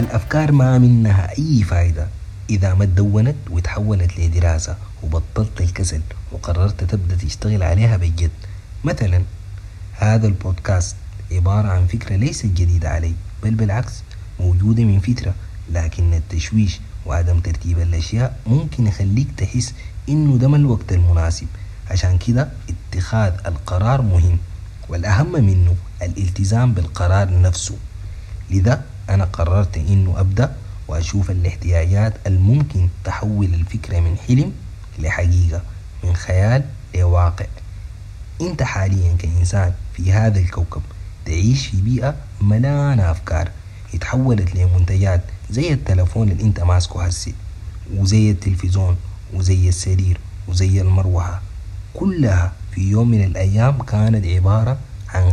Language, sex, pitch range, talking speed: Arabic, male, 90-105 Hz, 110 wpm